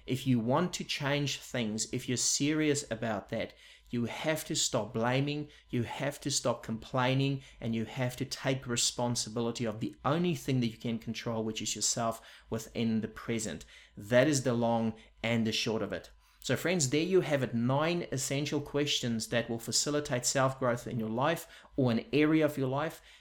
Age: 30-49